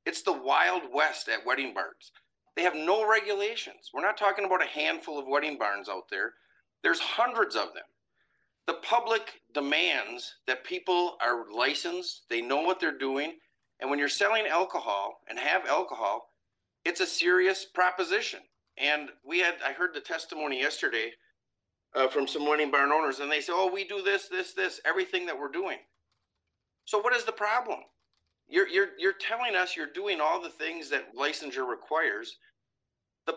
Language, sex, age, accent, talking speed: English, male, 50-69, American, 175 wpm